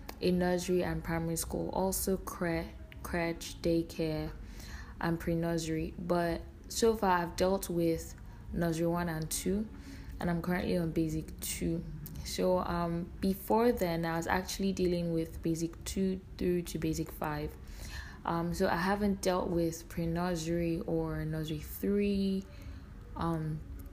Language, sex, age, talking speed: English, female, 20-39, 140 wpm